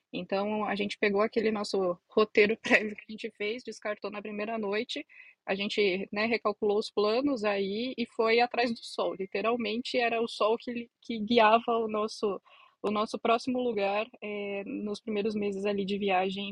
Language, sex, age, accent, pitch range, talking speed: Portuguese, female, 20-39, Brazilian, 190-225 Hz, 175 wpm